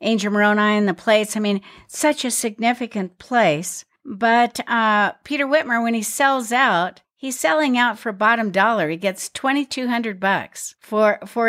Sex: female